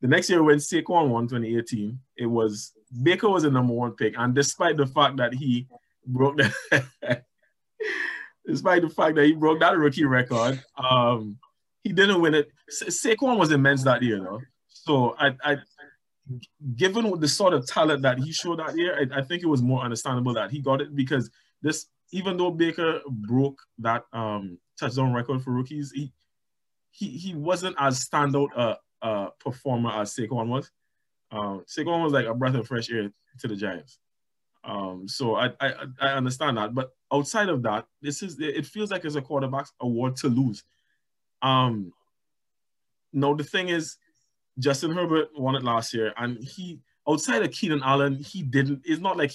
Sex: male